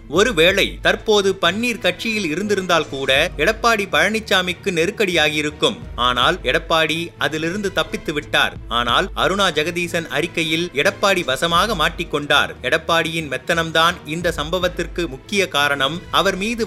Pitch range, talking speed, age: 160-195 Hz, 105 wpm, 30-49